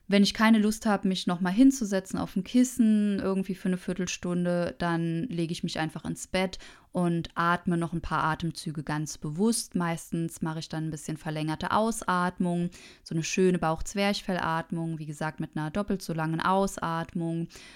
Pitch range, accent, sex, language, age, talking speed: 165-195 Hz, German, female, German, 20-39, 170 wpm